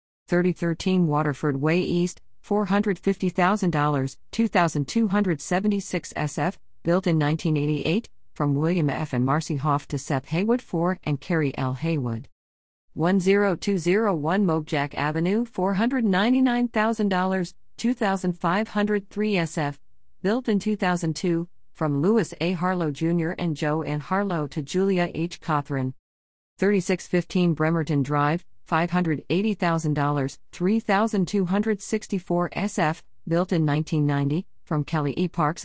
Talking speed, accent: 95 wpm, American